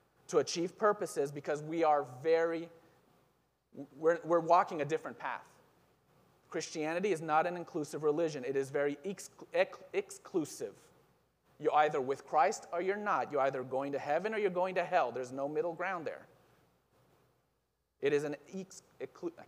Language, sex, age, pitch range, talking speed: English, male, 30-49, 125-185 Hz, 160 wpm